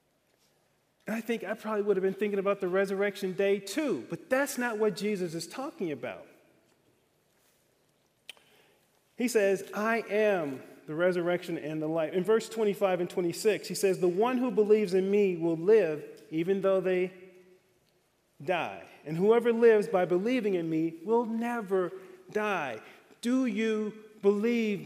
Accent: American